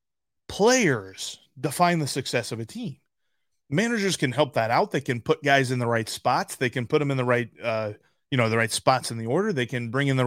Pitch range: 125-185 Hz